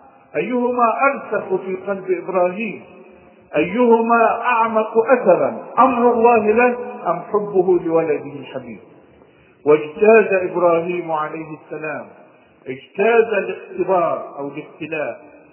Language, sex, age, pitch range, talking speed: Arabic, male, 50-69, 150-220 Hz, 90 wpm